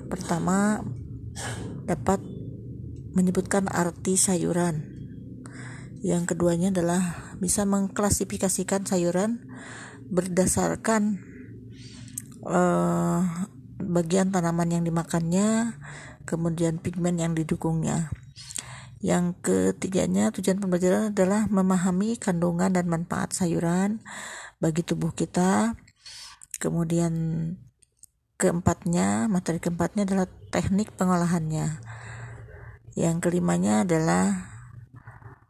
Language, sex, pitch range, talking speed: Indonesian, female, 130-185 Hz, 75 wpm